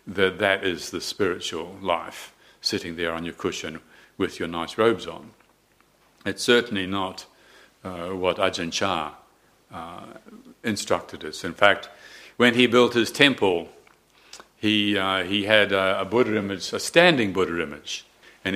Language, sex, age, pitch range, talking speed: English, male, 60-79, 90-110 Hz, 150 wpm